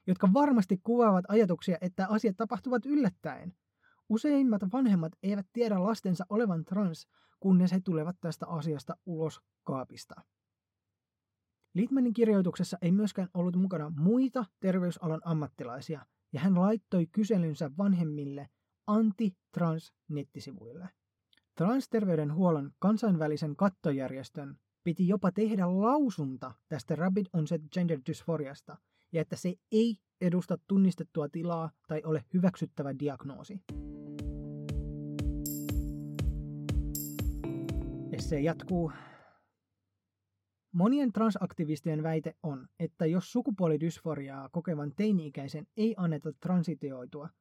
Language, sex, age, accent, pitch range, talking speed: Finnish, male, 20-39, native, 145-190 Hz, 95 wpm